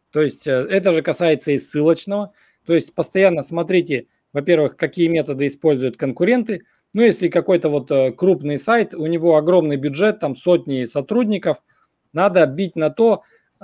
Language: Russian